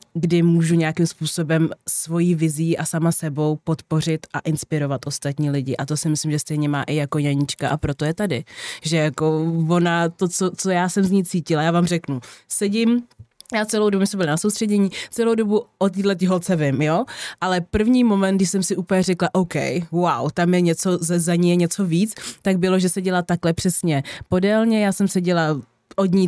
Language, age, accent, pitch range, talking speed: Czech, 20-39, native, 165-190 Hz, 200 wpm